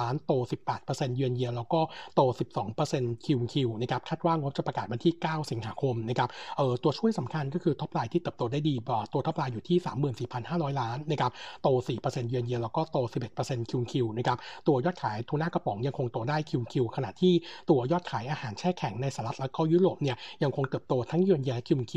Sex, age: male, 60-79